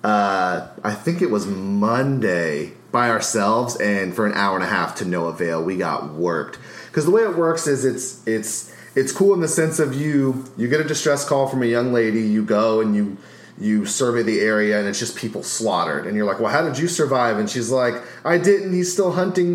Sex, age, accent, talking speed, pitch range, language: male, 30-49, American, 225 wpm, 95-140 Hz, English